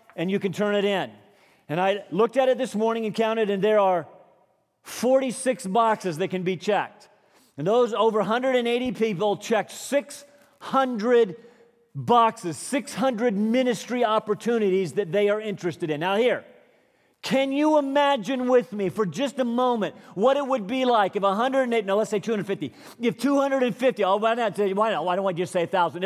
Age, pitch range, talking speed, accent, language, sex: 40-59, 185-250 Hz, 175 wpm, American, Russian, male